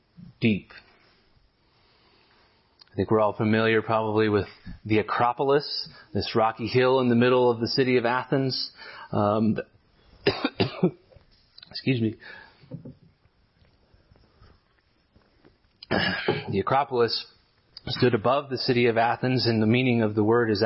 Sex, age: male, 30-49